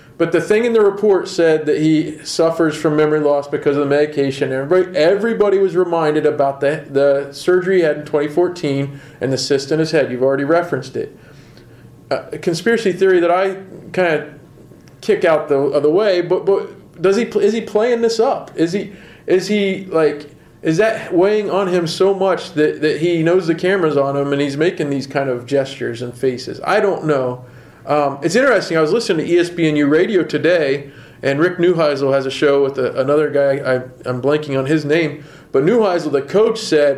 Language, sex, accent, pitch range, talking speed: English, male, American, 140-180 Hz, 205 wpm